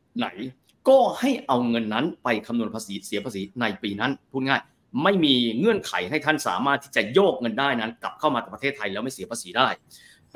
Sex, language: male, Thai